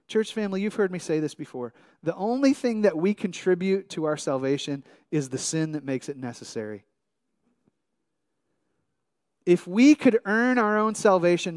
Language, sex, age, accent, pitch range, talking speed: English, male, 30-49, American, 130-180 Hz, 160 wpm